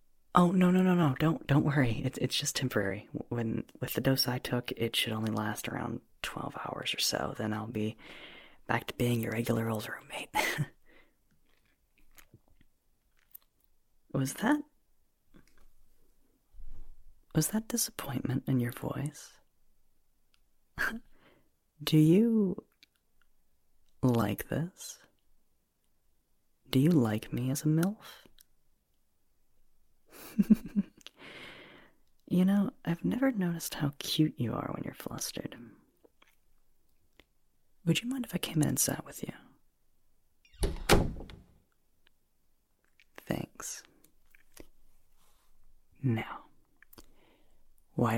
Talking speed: 100 wpm